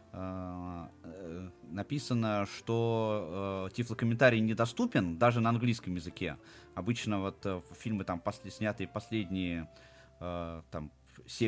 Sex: male